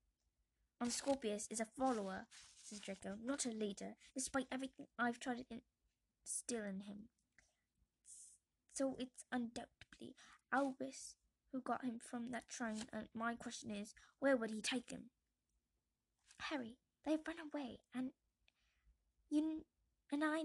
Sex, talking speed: female, 130 wpm